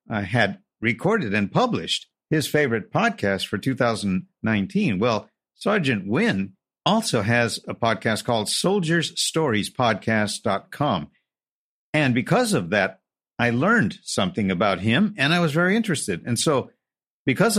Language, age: English, 50-69